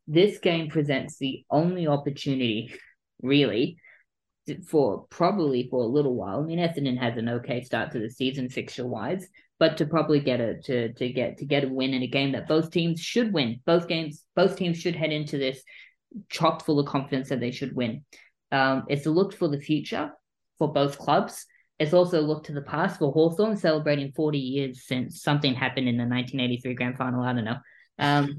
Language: English